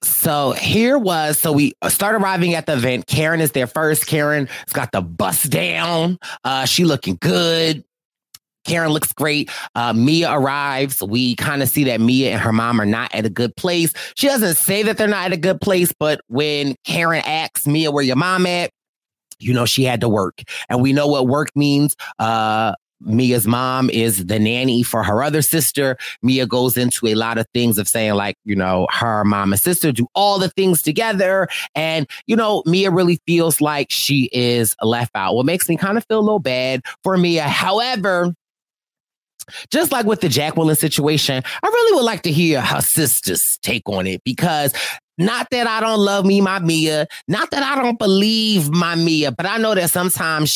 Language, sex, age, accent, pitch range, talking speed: English, male, 30-49, American, 125-180 Hz, 200 wpm